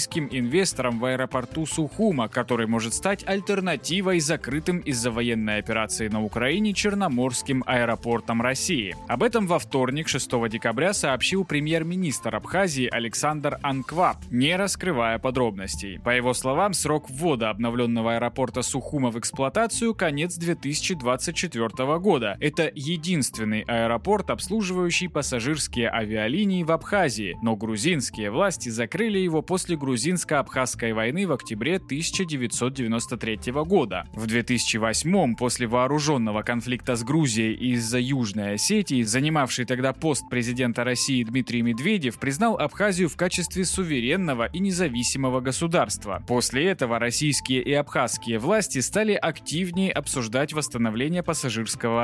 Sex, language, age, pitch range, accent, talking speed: male, Russian, 20-39, 120-170 Hz, native, 120 wpm